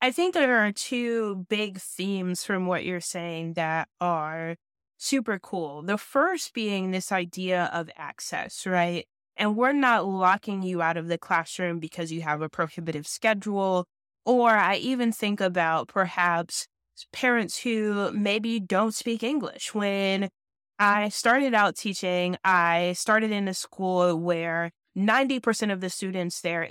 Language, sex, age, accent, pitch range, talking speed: English, female, 20-39, American, 175-215 Hz, 150 wpm